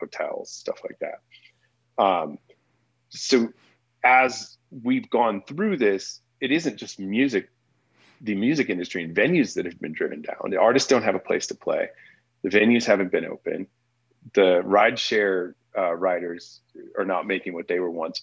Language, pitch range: English, 90-135 Hz